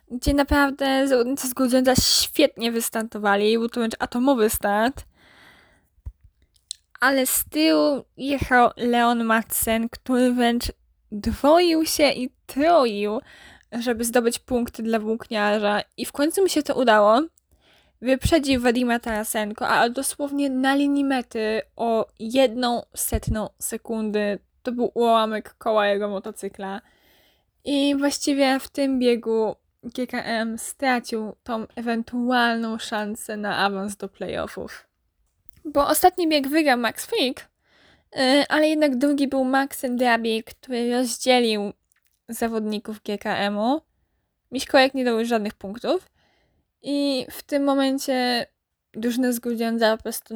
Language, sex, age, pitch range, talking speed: Polish, female, 10-29, 220-270 Hz, 115 wpm